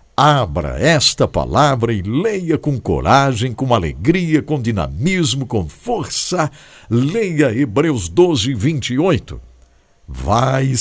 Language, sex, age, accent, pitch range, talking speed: English, male, 60-79, Brazilian, 100-165 Hz, 100 wpm